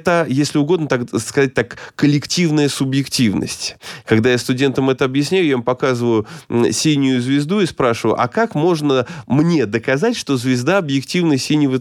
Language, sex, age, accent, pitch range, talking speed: Russian, male, 20-39, native, 125-160 Hz, 145 wpm